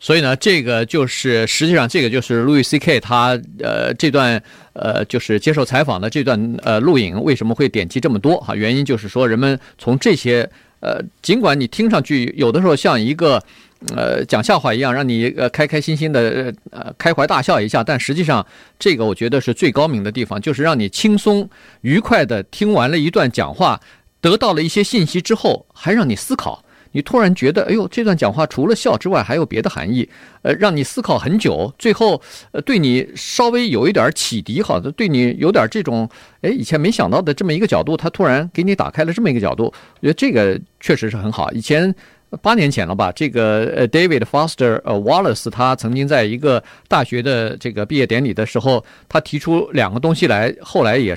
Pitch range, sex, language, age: 120-180 Hz, male, Chinese, 50-69